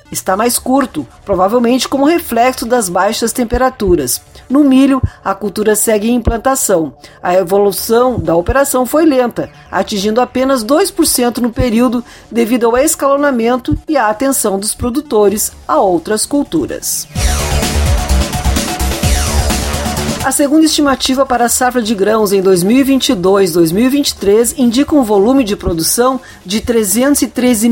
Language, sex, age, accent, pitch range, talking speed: Portuguese, female, 40-59, Brazilian, 205-265 Hz, 120 wpm